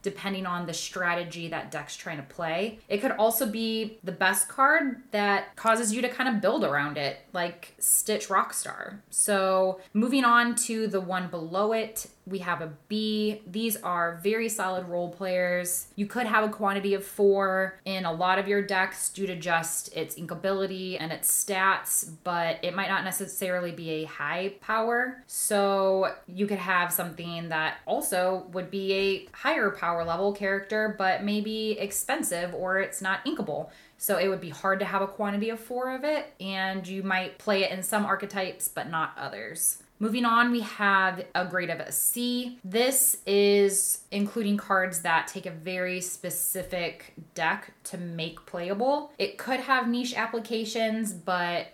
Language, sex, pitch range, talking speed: English, female, 180-215 Hz, 175 wpm